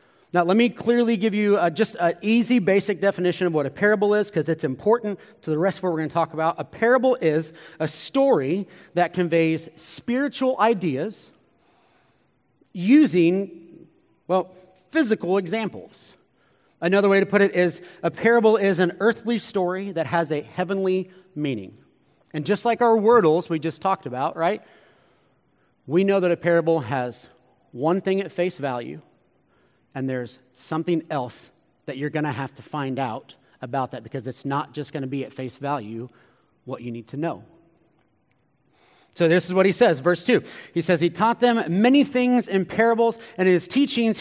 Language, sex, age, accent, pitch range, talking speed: English, male, 30-49, American, 155-205 Hz, 175 wpm